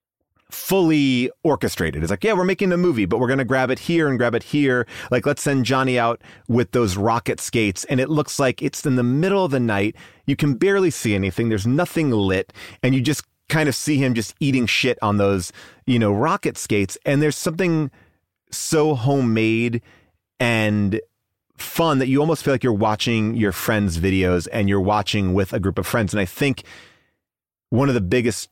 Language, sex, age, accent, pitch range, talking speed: English, male, 30-49, American, 100-135 Hz, 200 wpm